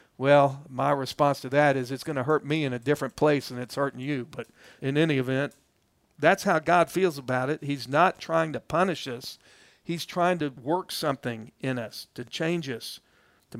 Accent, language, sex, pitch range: American, English, male, 135-175 Hz